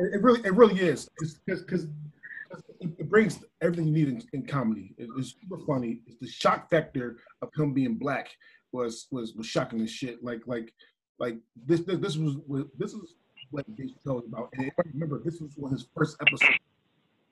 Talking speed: 200 wpm